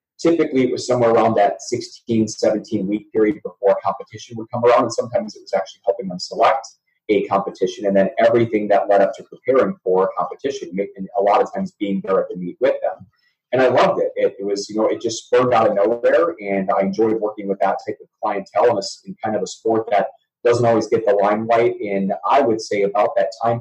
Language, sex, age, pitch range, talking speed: English, male, 30-49, 100-155 Hz, 235 wpm